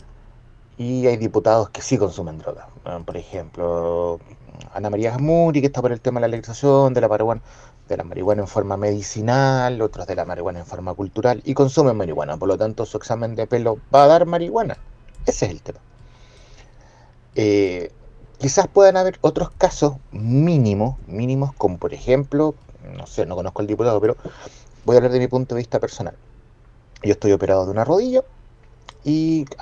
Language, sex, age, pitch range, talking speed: Spanish, male, 30-49, 110-140 Hz, 180 wpm